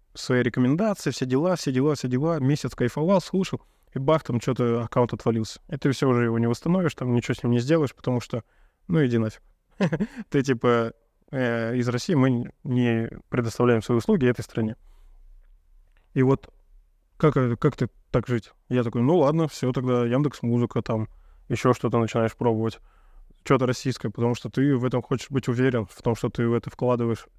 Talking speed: 180 wpm